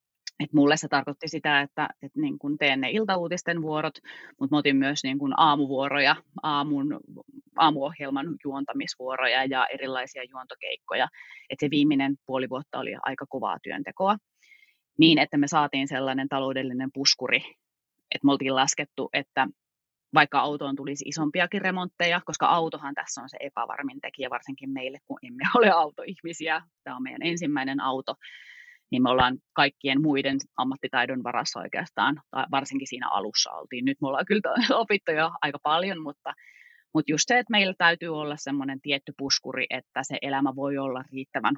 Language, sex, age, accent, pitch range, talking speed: Finnish, female, 30-49, native, 140-210 Hz, 155 wpm